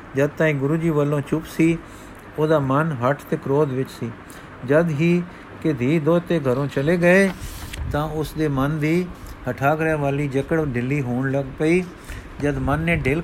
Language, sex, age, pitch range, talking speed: Punjabi, male, 50-69, 130-160 Hz, 165 wpm